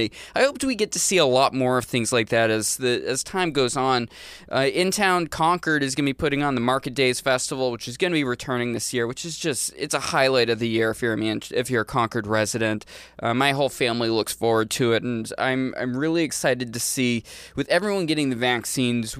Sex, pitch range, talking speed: male, 120-160 Hz, 240 wpm